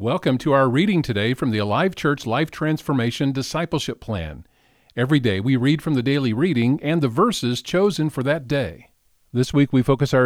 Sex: male